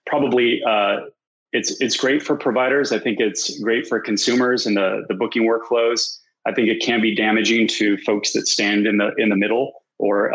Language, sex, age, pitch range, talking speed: English, male, 30-49, 100-115 Hz, 195 wpm